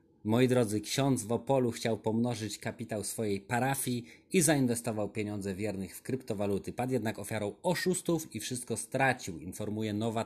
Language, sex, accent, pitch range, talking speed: Polish, male, native, 105-125 Hz, 145 wpm